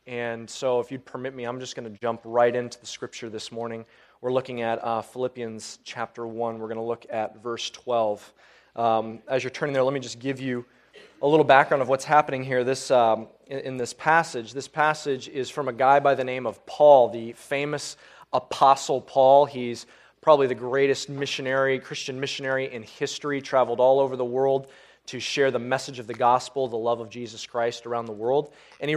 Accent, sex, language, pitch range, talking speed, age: American, male, English, 120-140 Hz, 205 wpm, 20-39